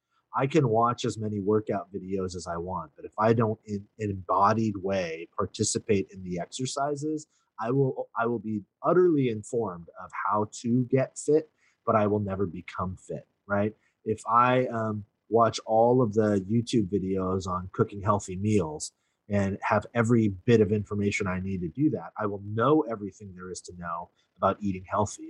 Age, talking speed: 30-49, 180 wpm